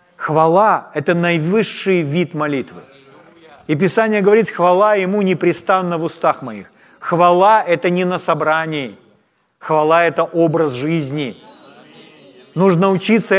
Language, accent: Ukrainian, native